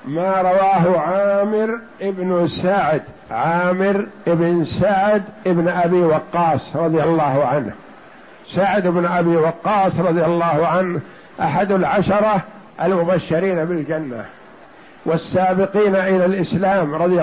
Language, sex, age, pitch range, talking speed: Arabic, male, 60-79, 180-210 Hz, 100 wpm